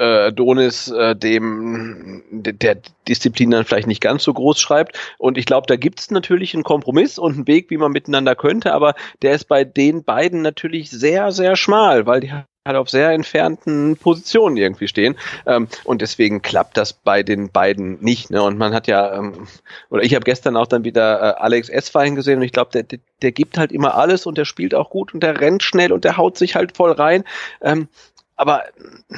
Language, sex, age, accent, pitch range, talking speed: German, male, 40-59, German, 115-160 Hz, 210 wpm